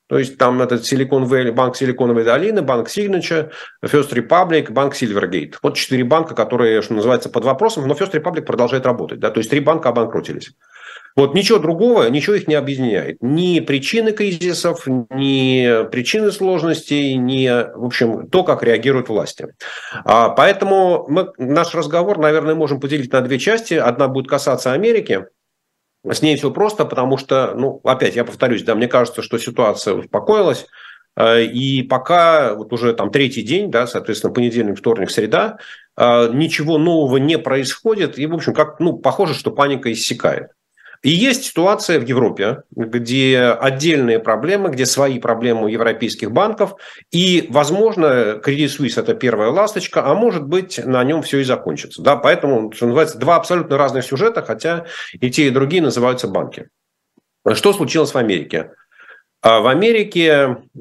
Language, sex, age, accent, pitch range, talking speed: Russian, male, 40-59, native, 125-170 Hz, 155 wpm